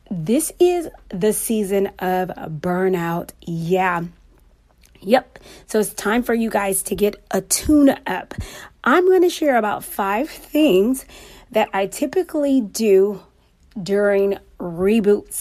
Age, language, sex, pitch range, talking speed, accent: 30-49, English, female, 190-250 Hz, 125 wpm, American